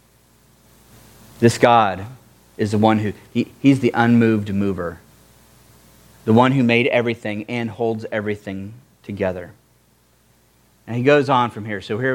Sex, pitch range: male, 110-150 Hz